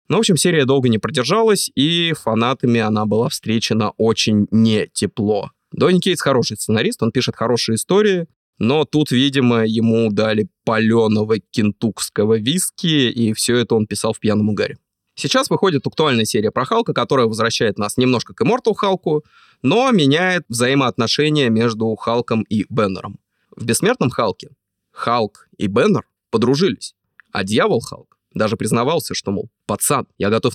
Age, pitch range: 20-39, 110-155 Hz